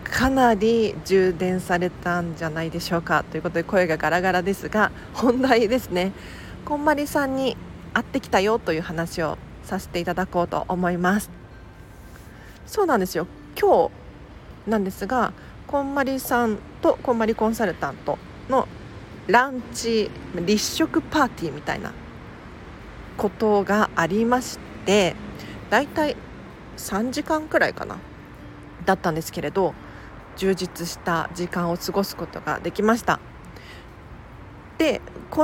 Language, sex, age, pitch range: Japanese, female, 40-59, 175-255 Hz